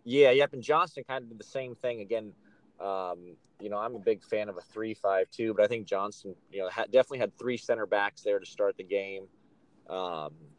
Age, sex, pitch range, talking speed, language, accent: 30-49, male, 100-125 Hz, 220 wpm, English, American